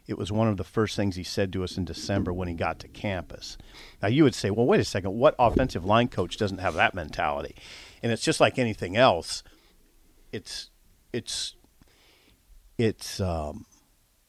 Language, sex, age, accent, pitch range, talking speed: English, male, 50-69, American, 95-120 Hz, 185 wpm